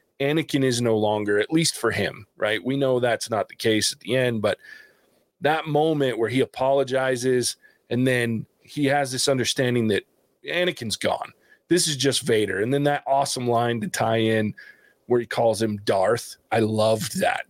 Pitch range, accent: 120-155 Hz, American